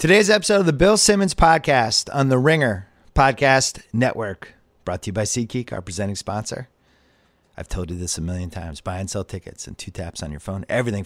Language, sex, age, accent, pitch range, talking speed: English, male, 30-49, American, 95-130 Hz, 205 wpm